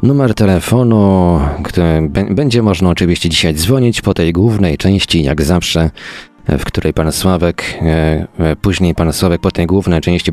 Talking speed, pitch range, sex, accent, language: 150 wpm, 80-100 Hz, male, native, Polish